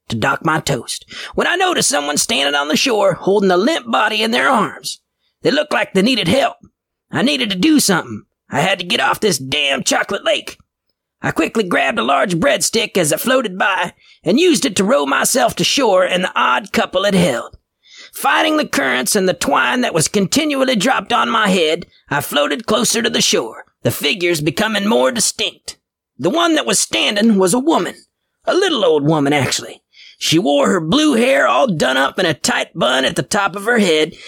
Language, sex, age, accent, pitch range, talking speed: English, male, 40-59, American, 185-265 Hz, 205 wpm